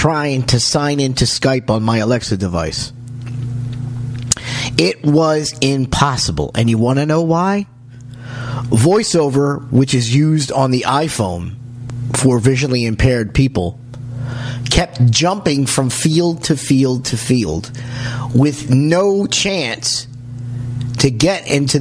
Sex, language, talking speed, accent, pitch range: male, English, 120 wpm, American, 120-145 Hz